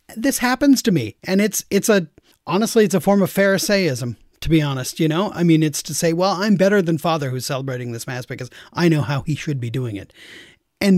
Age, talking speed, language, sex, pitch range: 40-59, 235 wpm, English, male, 130-180 Hz